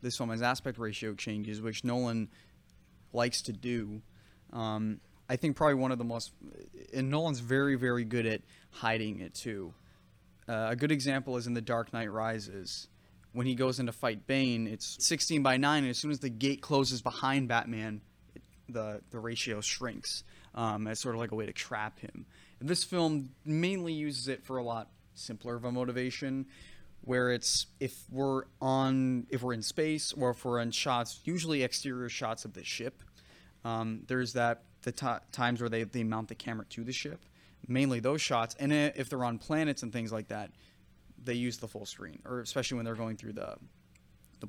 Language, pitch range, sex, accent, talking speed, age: English, 110-135 Hz, male, American, 195 wpm, 20-39